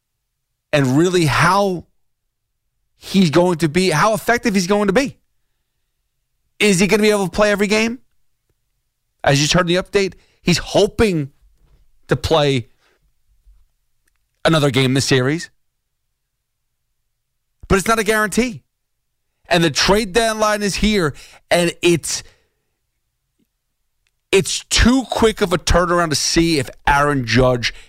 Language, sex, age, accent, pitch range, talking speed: English, male, 30-49, American, 125-190 Hz, 135 wpm